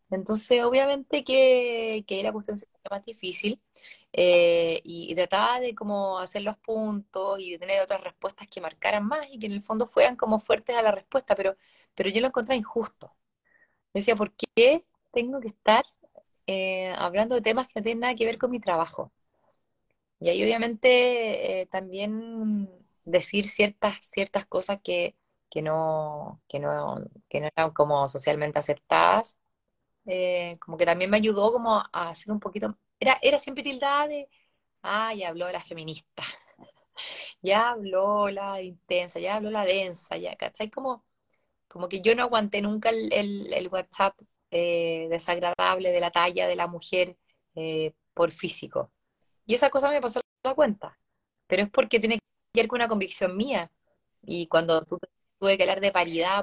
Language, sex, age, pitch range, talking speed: Spanish, female, 20-39, 180-235 Hz, 170 wpm